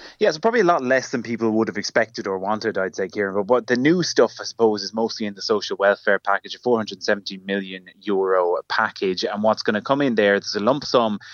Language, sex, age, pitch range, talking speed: English, male, 20-39, 100-115 Hz, 250 wpm